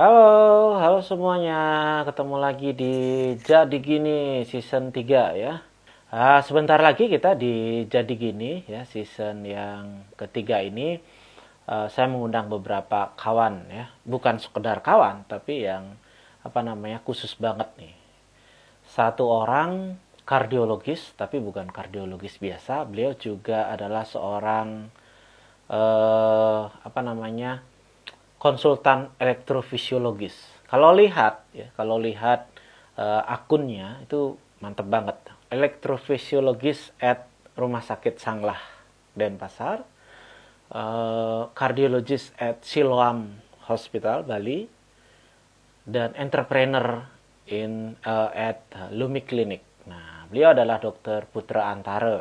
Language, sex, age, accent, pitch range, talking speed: Indonesian, male, 30-49, native, 110-135 Hz, 100 wpm